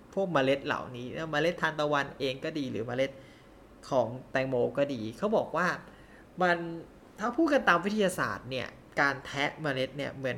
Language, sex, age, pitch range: Thai, male, 20-39, 140-175 Hz